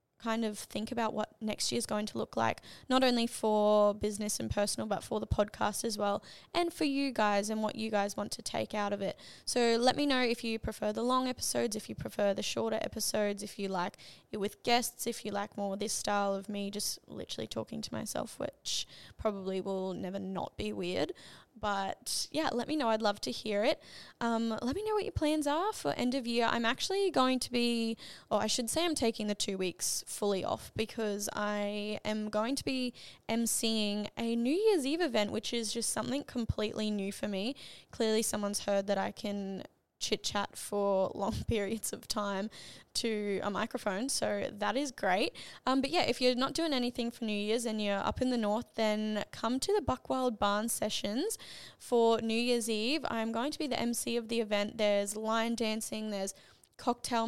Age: 10-29